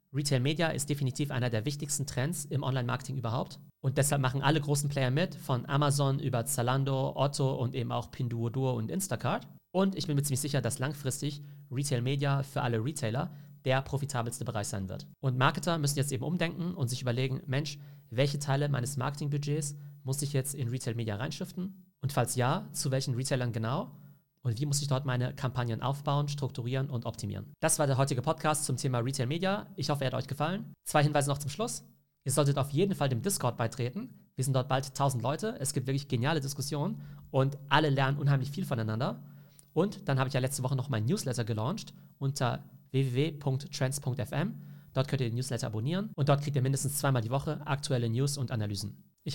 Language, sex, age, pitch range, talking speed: German, male, 40-59, 130-150 Hz, 200 wpm